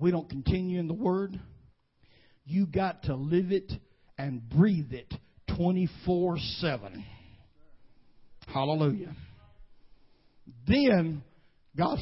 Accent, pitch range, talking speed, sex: American, 160-245 Hz, 90 wpm, male